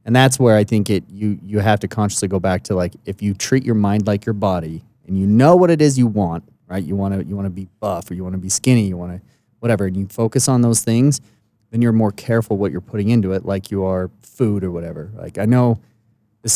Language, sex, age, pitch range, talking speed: English, male, 30-49, 100-120 Hz, 265 wpm